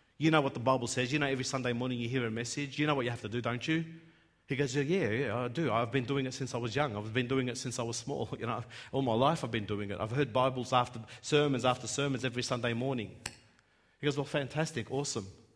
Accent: Australian